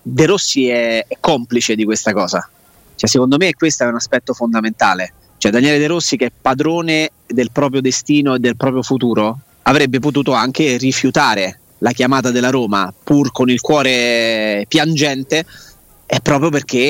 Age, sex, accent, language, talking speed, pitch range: 30-49, male, native, Italian, 160 wpm, 120-145 Hz